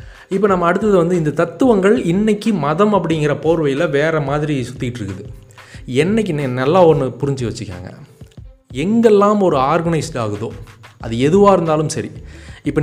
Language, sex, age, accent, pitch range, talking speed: Tamil, male, 30-49, native, 115-165 Hz, 125 wpm